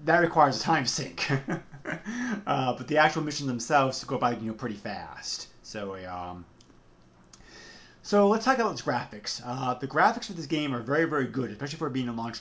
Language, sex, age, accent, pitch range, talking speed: English, male, 30-49, American, 120-155 Hz, 200 wpm